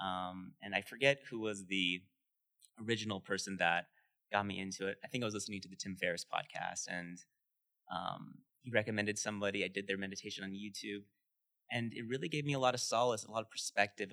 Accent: American